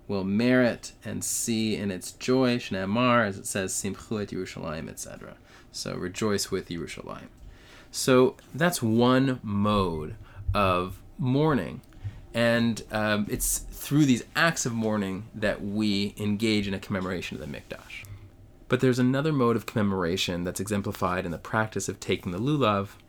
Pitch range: 100-120 Hz